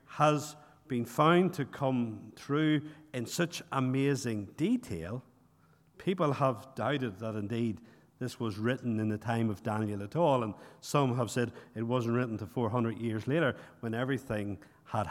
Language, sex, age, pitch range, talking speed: English, male, 50-69, 115-150 Hz, 155 wpm